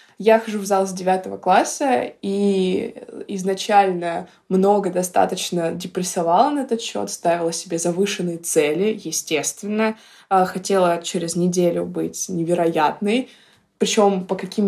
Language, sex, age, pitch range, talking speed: Russian, female, 20-39, 170-205 Hz, 115 wpm